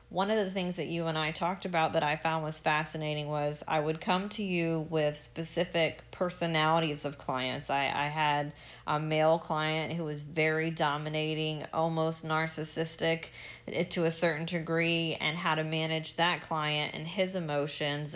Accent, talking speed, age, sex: American, 170 wpm, 30-49, female